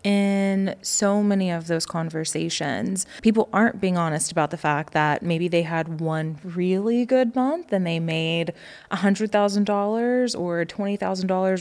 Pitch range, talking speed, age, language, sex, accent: 165-200 Hz, 165 wpm, 20-39, English, female, American